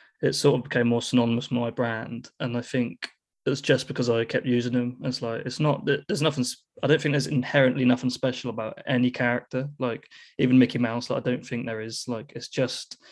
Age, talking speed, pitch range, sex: 20-39, 220 wpm, 120-130 Hz, male